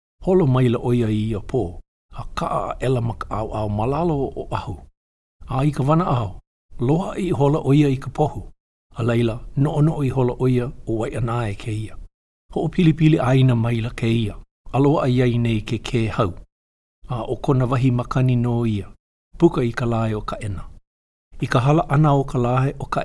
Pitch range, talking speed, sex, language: 110-140 Hz, 160 wpm, male, English